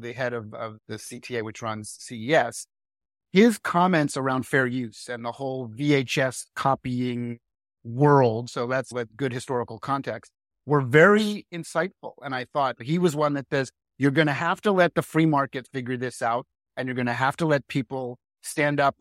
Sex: male